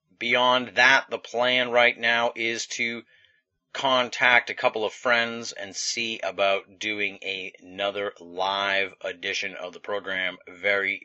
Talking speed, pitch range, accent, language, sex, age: 130 wpm, 95-115 Hz, American, English, male, 30-49